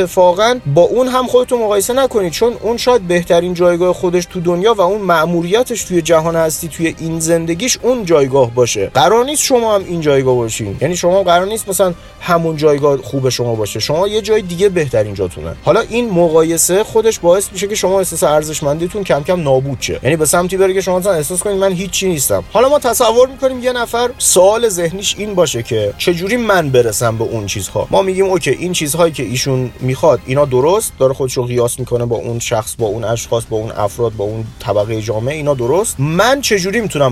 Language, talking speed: Persian, 200 wpm